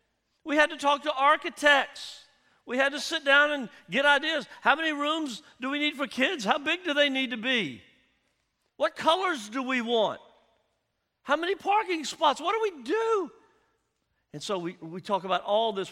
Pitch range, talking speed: 180-280 Hz, 190 wpm